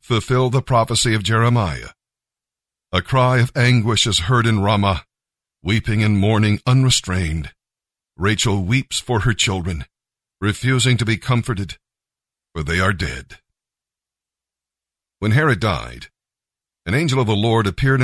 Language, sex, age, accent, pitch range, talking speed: English, male, 50-69, American, 100-120 Hz, 130 wpm